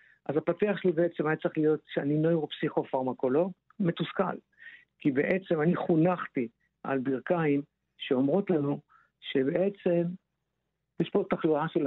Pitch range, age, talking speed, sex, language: 145-185 Hz, 50-69, 115 wpm, male, Hebrew